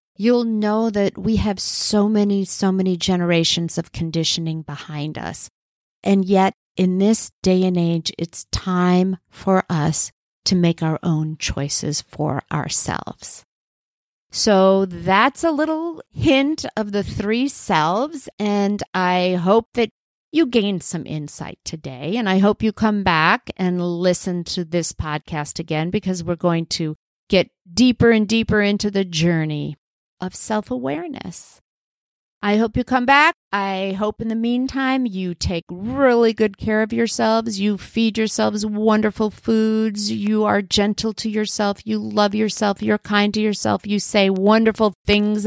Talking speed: 150 wpm